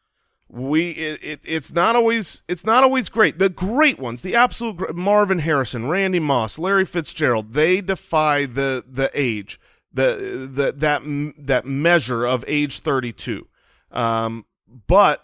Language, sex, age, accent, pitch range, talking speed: English, male, 30-49, American, 140-195 Hz, 140 wpm